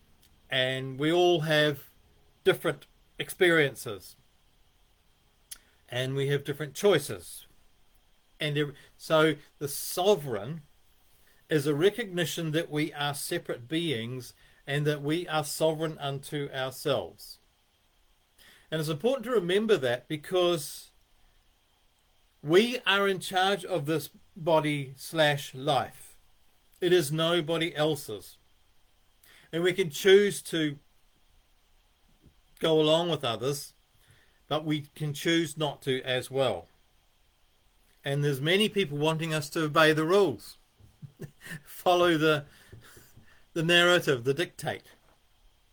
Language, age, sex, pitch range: English, 40-59, male, 125-170 Hz